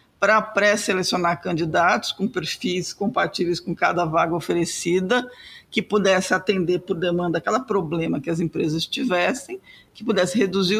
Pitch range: 180-220 Hz